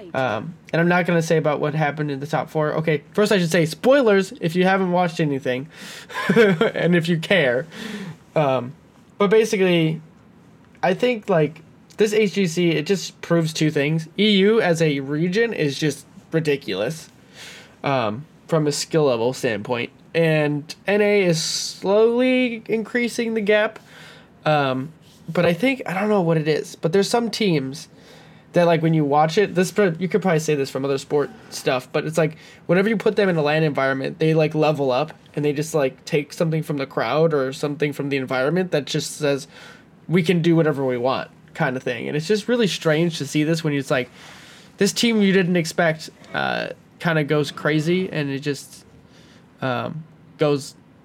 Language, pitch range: English, 150-190 Hz